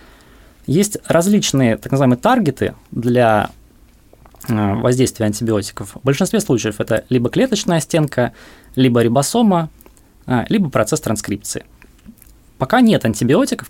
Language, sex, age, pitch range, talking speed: Russian, male, 20-39, 110-150 Hz, 100 wpm